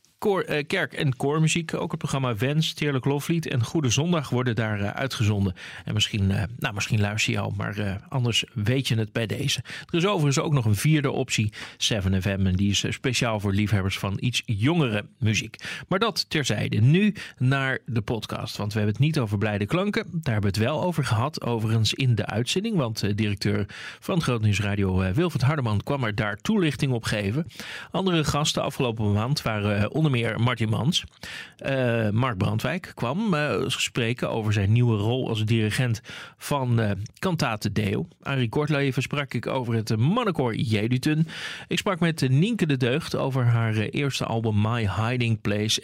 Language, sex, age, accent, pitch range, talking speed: Dutch, male, 40-59, Dutch, 110-145 Hz, 185 wpm